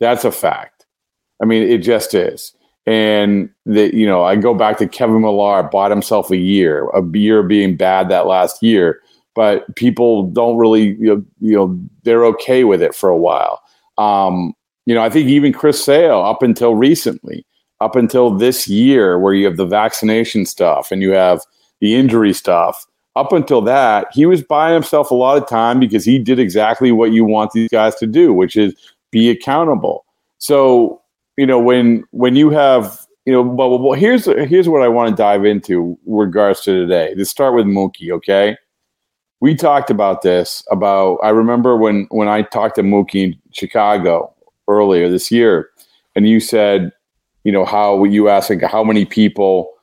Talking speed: 185 wpm